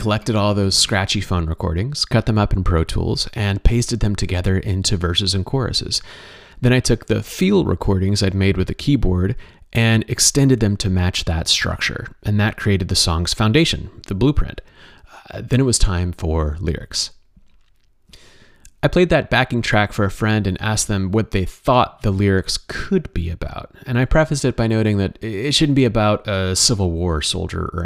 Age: 30-49